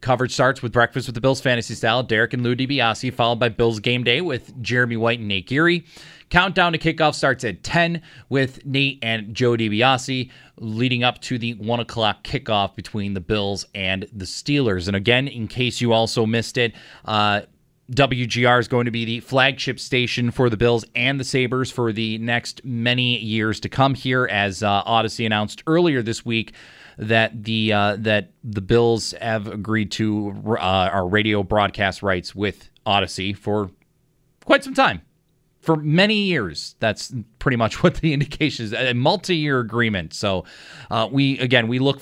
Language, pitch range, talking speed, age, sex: English, 105-130 Hz, 175 wpm, 30-49, male